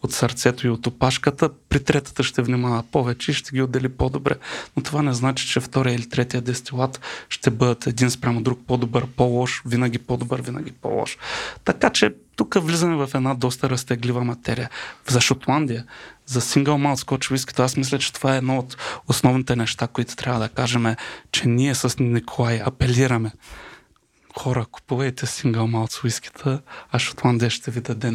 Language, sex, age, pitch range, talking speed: Bulgarian, male, 30-49, 120-130 Hz, 165 wpm